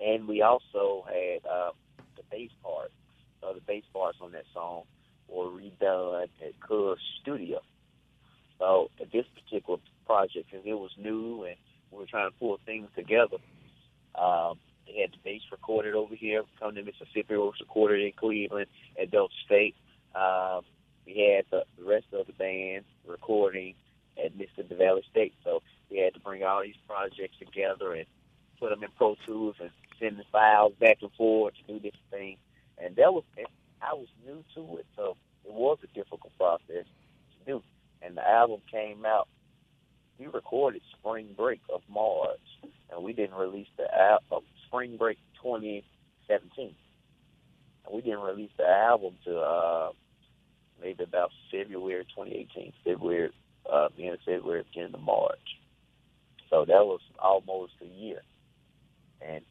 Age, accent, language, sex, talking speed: 30-49, American, English, male, 160 wpm